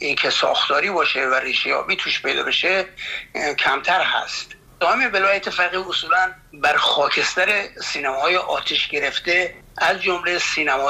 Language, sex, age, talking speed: Persian, male, 60-79, 120 wpm